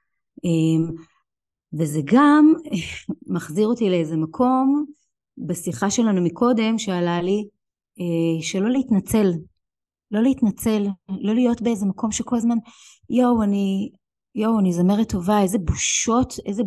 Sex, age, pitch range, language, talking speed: female, 30-49, 185-230 Hz, Hebrew, 115 wpm